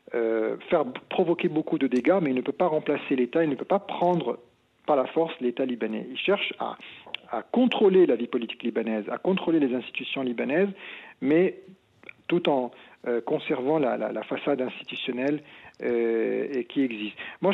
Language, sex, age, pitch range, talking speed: French, male, 50-69, 125-165 Hz, 180 wpm